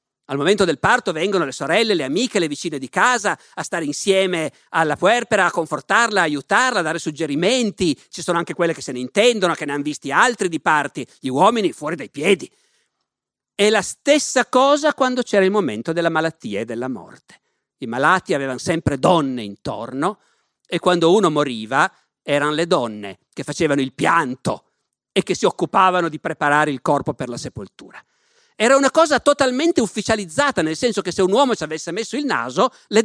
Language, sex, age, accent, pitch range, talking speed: Italian, male, 50-69, native, 155-235 Hz, 185 wpm